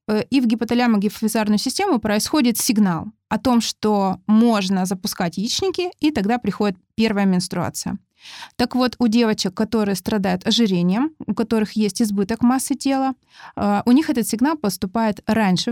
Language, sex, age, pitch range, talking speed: Russian, female, 20-39, 190-240 Hz, 135 wpm